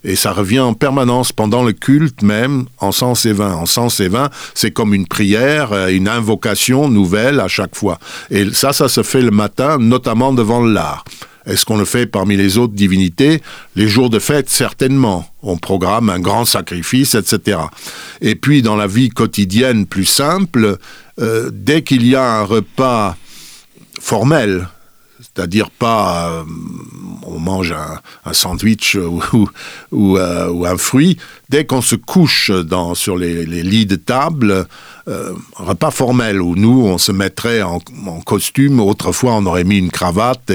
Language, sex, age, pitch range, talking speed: French, male, 60-79, 95-130 Hz, 170 wpm